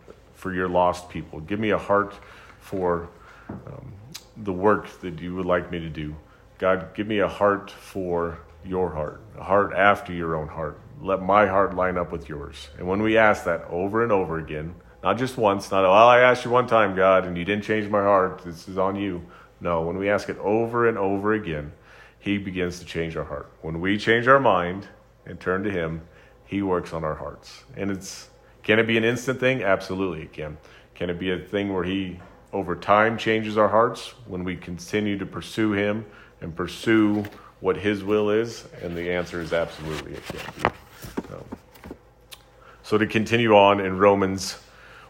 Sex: male